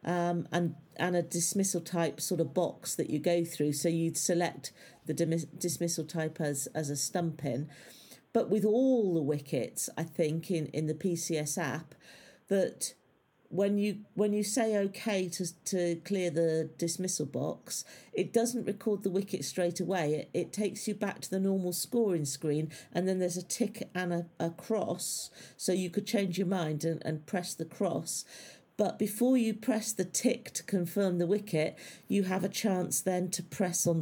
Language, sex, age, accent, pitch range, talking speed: English, female, 50-69, British, 160-190 Hz, 185 wpm